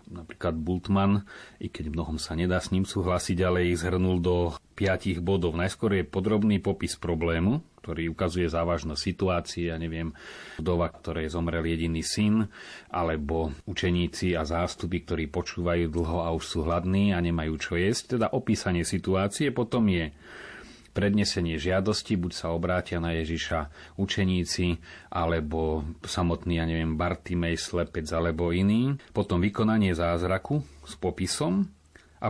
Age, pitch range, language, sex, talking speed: 30-49, 85-100 Hz, Slovak, male, 140 wpm